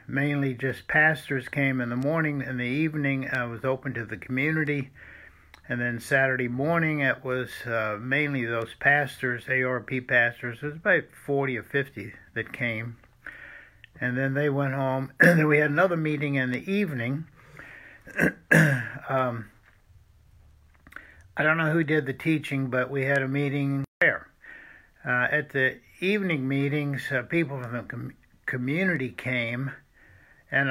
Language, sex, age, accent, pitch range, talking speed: English, male, 60-79, American, 120-150 Hz, 150 wpm